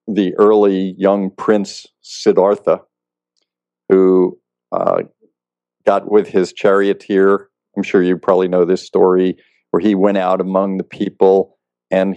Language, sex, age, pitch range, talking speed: English, male, 50-69, 80-100 Hz, 130 wpm